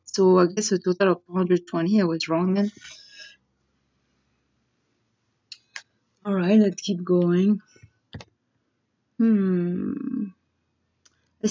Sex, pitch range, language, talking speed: female, 180-225 Hz, English, 95 wpm